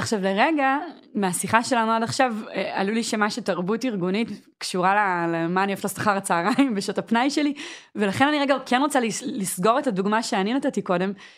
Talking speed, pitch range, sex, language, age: 160 wpm, 190-260 Hz, female, Hebrew, 20-39